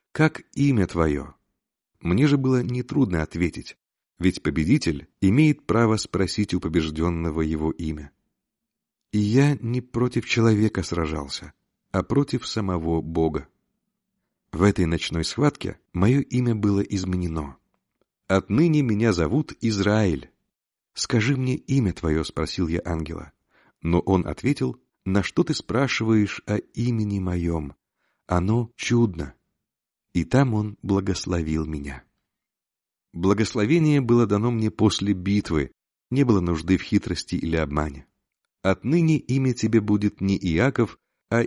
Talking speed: 120 wpm